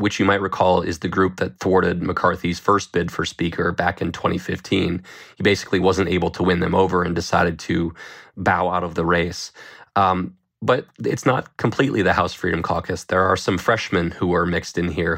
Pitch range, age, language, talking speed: 85-95 Hz, 20-39, English, 200 wpm